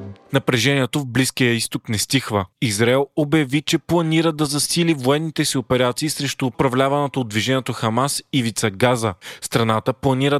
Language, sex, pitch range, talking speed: Bulgarian, male, 120-145 Hz, 140 wpm